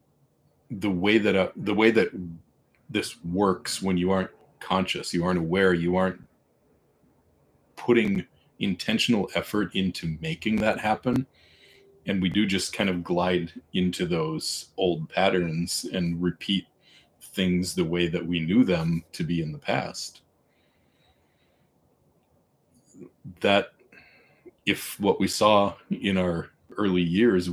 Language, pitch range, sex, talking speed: English, 85-100 Hz, male, 130 wpm